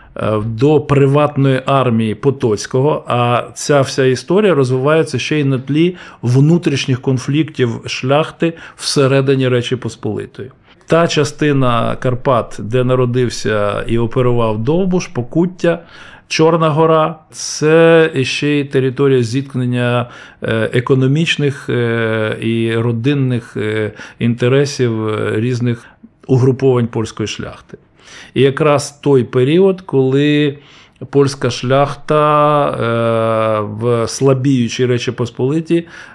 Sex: male